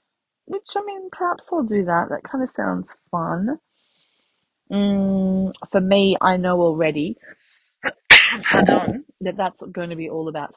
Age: 20-39